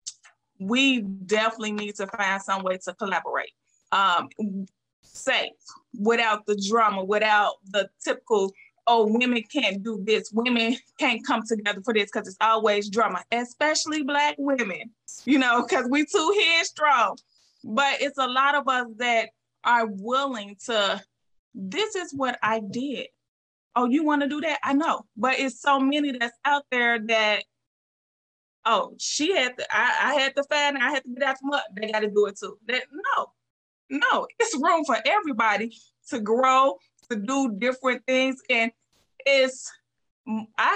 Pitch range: 225-285 Hz